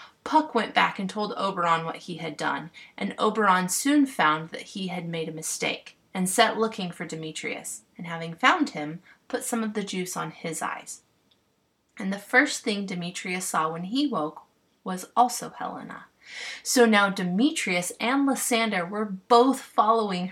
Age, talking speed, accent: 30-49, 170 wpm, American